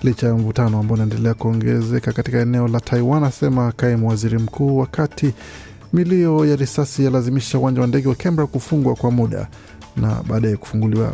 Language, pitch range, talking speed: Swahili, 115-135 Hz, 165 wpm